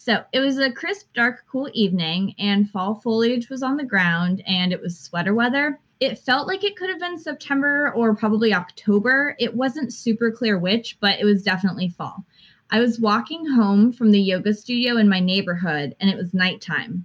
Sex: female